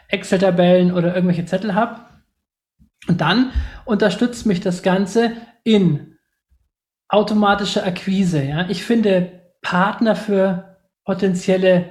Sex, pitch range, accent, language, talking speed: male, 180-215 Hz, German, German, 95 wpm